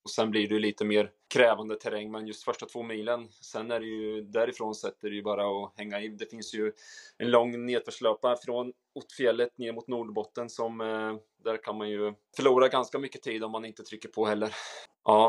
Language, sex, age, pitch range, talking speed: Swedish, male, 20-39, 105-115 Hz, 205 wpm